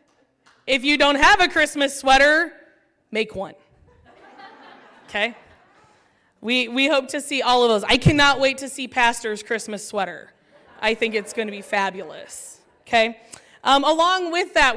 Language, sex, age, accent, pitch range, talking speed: English, female, 20-39, American, 235-305 Hz, 155 wpm